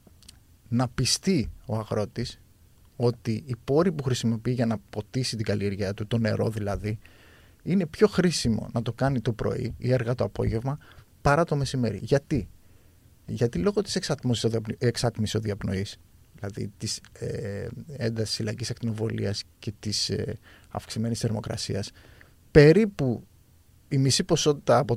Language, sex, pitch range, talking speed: Greek, male, 105-135 Hz, 135 wpm